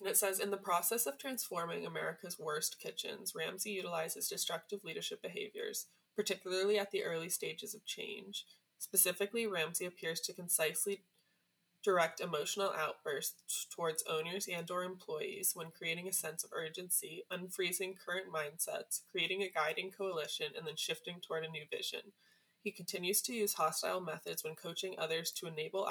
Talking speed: 155 wpm